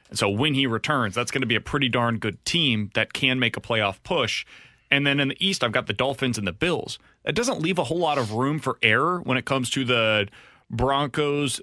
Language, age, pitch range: English, 30-49, 125-190 Hz